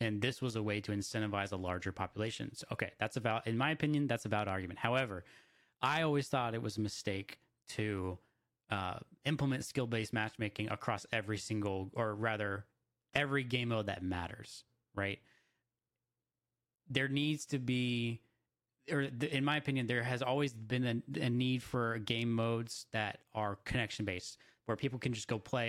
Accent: American